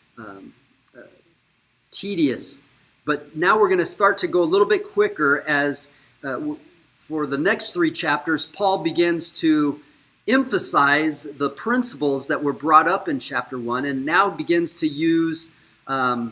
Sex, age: male, 40-59